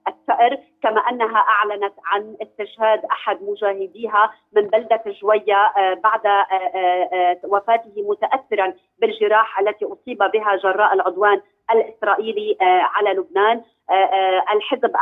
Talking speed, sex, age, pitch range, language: 95 wpm, female, 30-49, 200-225 Hz, Arabic